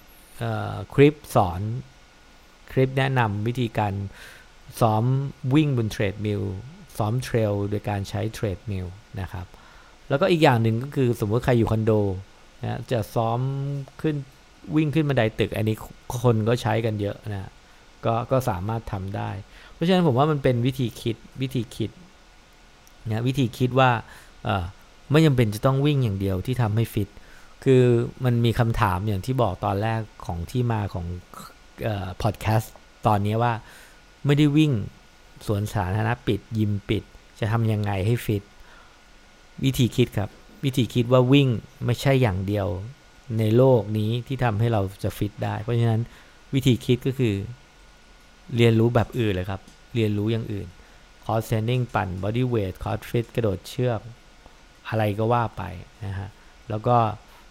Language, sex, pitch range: English, male, 105-125 Hz